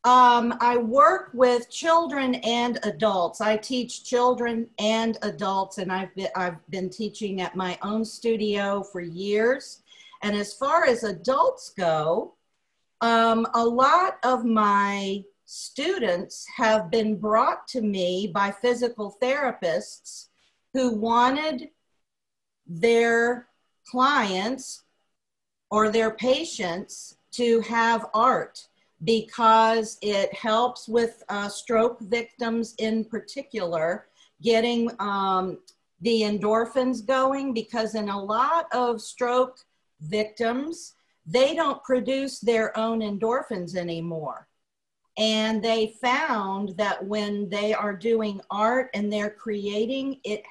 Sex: female